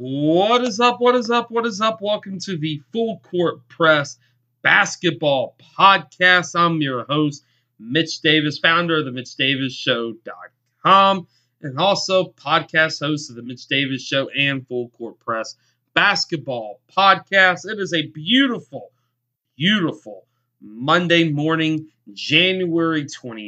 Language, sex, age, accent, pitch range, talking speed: English, male, 30-49, American, 130-170 Hz, 125 wpm